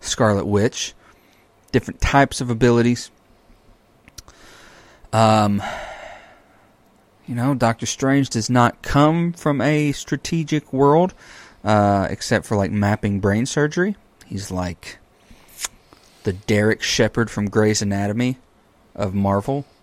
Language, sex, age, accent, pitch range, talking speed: English, male, 30-49, American, 100-125 Hz, 105 wpm